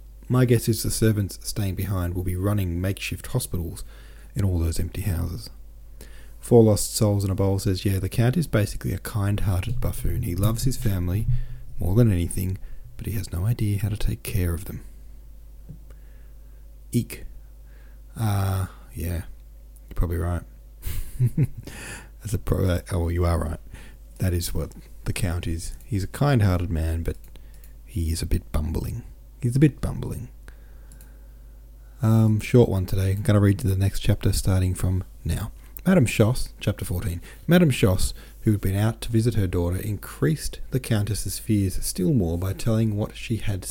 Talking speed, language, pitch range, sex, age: 170 wpm, English, 85-110 Hz, male, 40-59